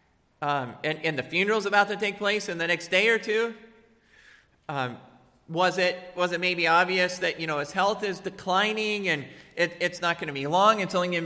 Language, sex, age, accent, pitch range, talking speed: English, male, 40-59, American, 175-225 Hz, 210 wpm